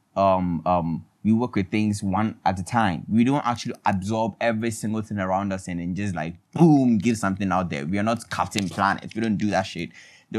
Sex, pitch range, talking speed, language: male, 95-115 Hz, 225 wpm, English